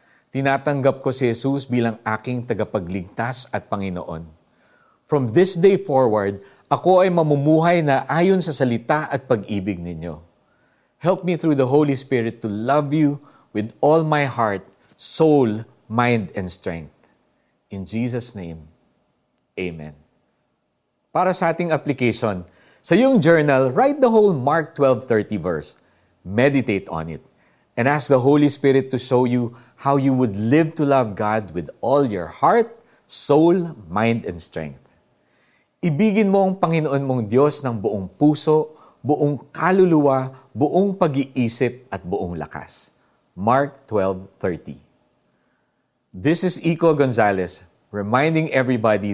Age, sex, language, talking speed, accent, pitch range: 50-69, male, Filipino, 130 wpm, native, 100-150 Hz